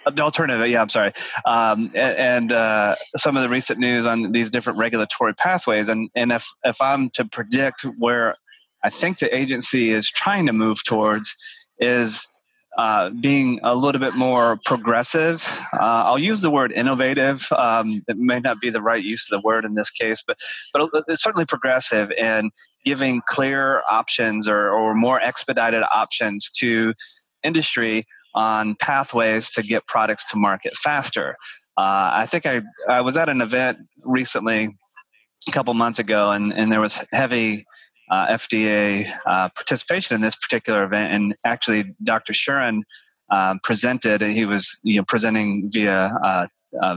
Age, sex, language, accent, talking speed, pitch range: 30-49, male, English, American, 165 wpm, 110-130 Hz